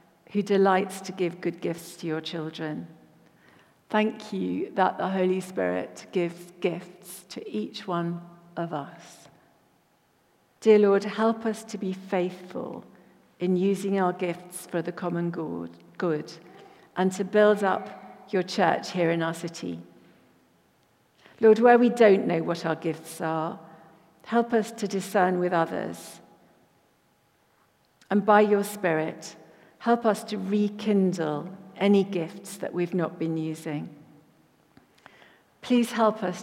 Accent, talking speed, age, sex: British, 130 wpm, 50-69, female